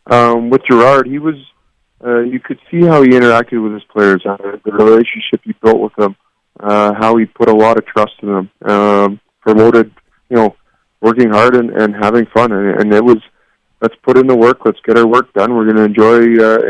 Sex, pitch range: male, 105-115 Hz